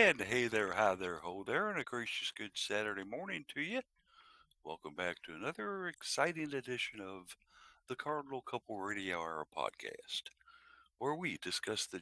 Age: 60-79